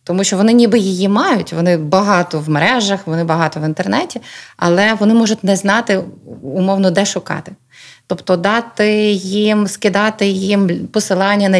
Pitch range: 170-200 Hz